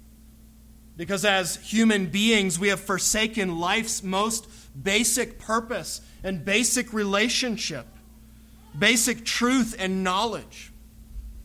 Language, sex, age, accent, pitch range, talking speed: English, male, 30-49, American, 155-200 Hz, 95 wpm